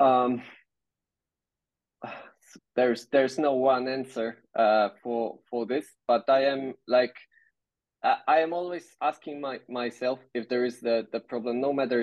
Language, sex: Hebrew, male